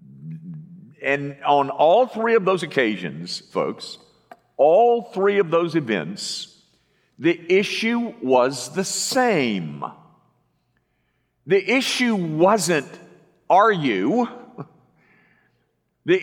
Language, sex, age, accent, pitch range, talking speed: English, male, 50-69, American, 160-220 Hz, 90 wpm